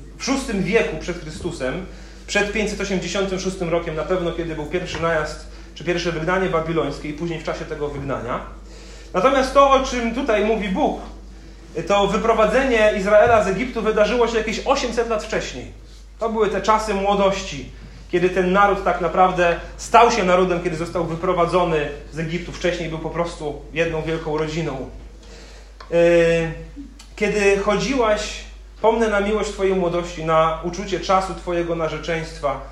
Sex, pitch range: male, 155-200 Hz